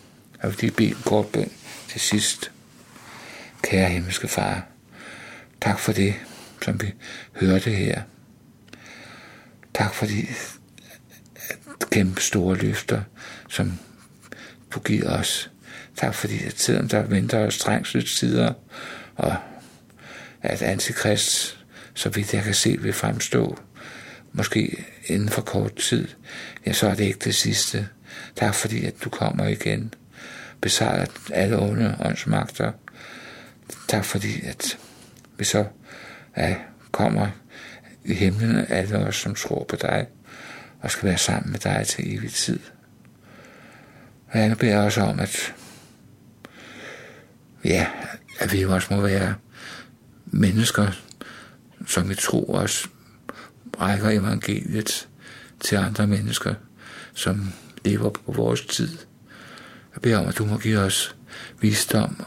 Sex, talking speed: male, 120 wpm